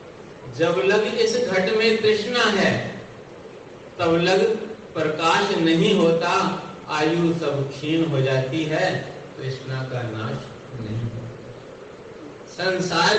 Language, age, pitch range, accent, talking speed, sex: Hindi, 50-69, 140-195 Hz, native, 100 wpm, male